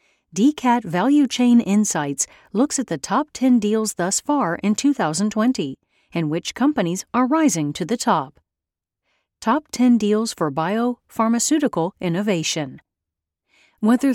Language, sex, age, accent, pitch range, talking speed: English, female, 40-59, American, 170-245 Hz, 125 wpm